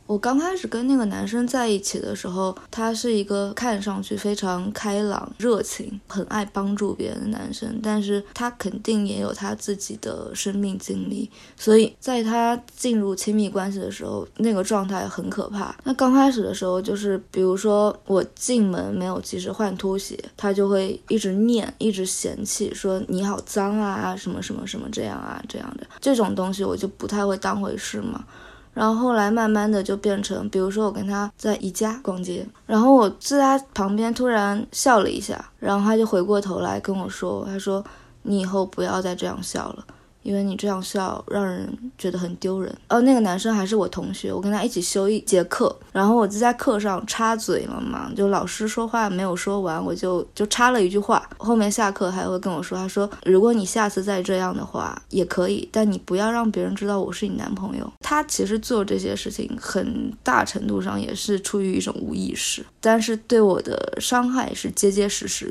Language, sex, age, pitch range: Chinese, female, 20-39, 195-225 Hz